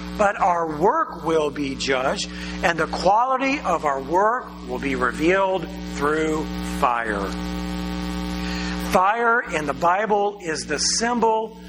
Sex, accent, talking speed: male, American, 125 wpm